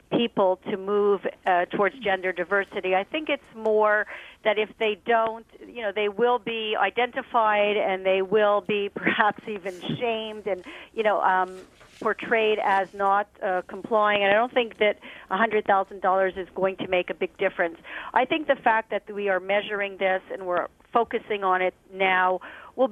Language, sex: English, female